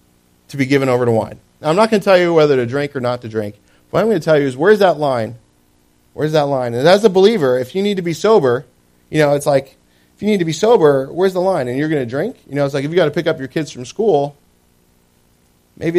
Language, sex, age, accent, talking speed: English, male, 30-49, American, 285 wpm